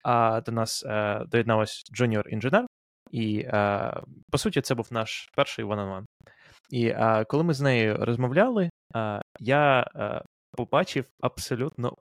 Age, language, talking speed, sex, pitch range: 20-39, Ukrainian, 140 wpm, male, 115-145 Hz